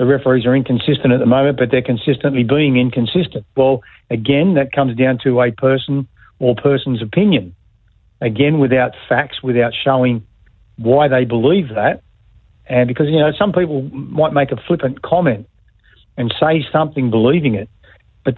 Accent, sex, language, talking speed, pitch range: Australian, male, English, 160 wpm, 120-150 Hz